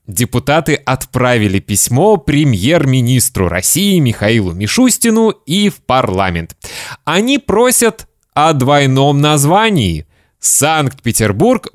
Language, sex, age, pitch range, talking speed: Russian, male, 20-39, 105-140 Hz, 80 wpm